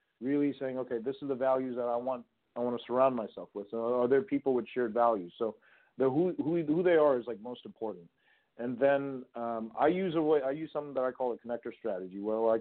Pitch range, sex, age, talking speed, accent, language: 115-135 Hz, male, 40-59, 245 wpm, American, English